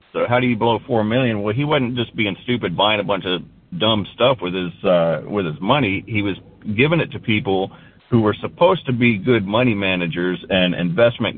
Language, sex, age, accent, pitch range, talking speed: English, male, 40-59, American, 95-120 Hz, 215 wpm